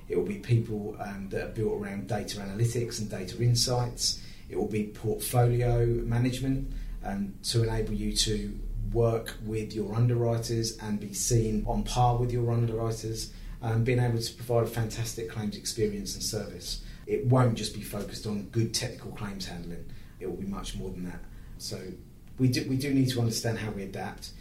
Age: 30-49